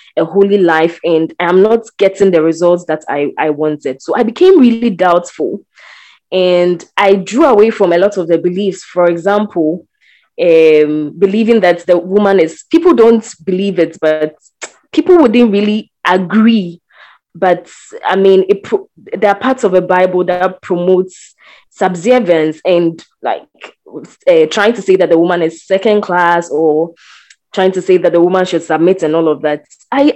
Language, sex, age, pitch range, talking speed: English, female, 20-39, 170-220 Hz, 165 wpm